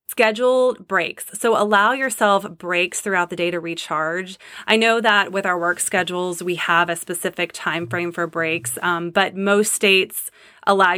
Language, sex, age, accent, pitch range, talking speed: English, female, 30-49, American, 175-210 Hz, 170 wpm